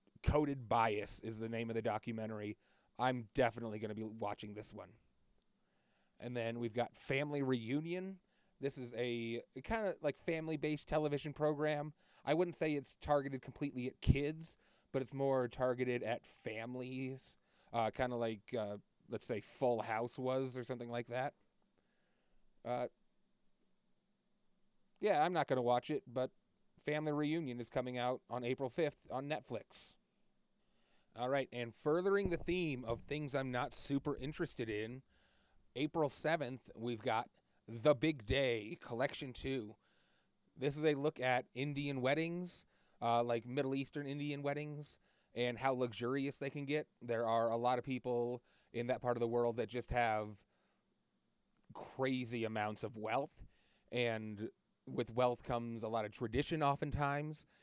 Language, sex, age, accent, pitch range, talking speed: English, male, 30-49, American, 120-145 Hz, 150 wpm